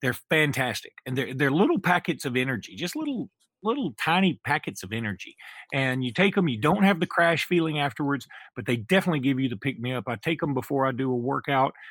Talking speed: 220 wpm